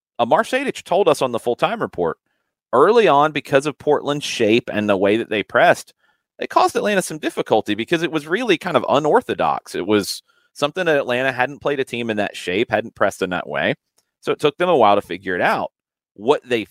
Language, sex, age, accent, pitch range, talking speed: English, male, 30-49, American, 90-135 Hz, 215 wpm